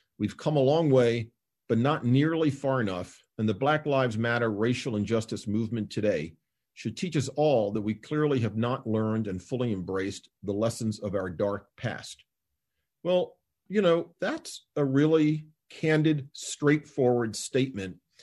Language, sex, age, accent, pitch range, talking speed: English, male, 50-69, American, 110-135 Hz, 155 wpm